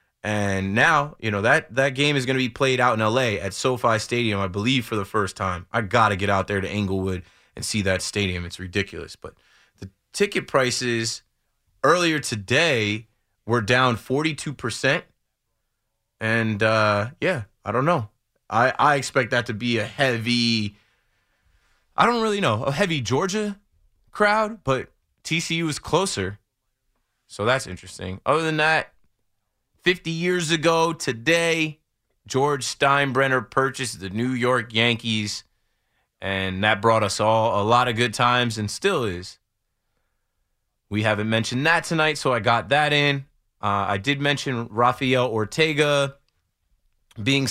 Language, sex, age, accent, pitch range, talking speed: English, male, 20-39, American, 105-135 Hz, 150 wpm